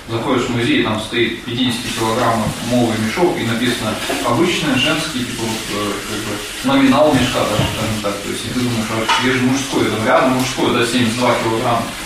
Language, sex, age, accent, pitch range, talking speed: Russian, male, 20-39, native, 110-125 Hz, 170 wpm